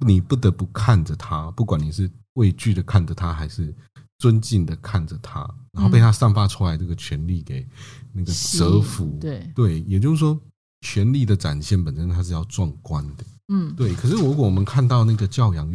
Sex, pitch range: male, 90-120 Hz